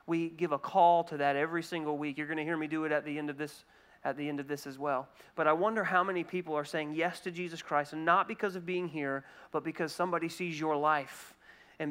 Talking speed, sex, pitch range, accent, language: 265 wpm, male, 150-200 Hz, American, English